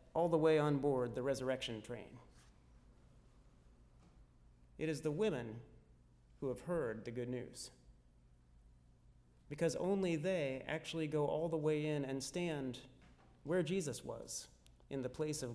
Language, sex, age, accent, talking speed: English, male, 30-49, American, 140 wpm